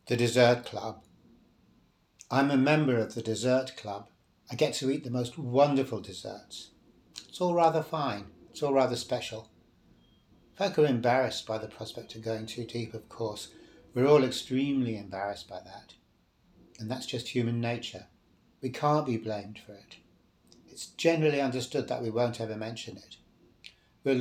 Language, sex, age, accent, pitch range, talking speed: English, male, 60-79, British, 110-130 Hz, 160 wpm